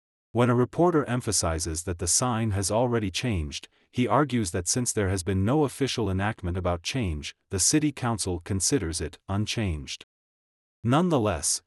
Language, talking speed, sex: English, 150 wpm, male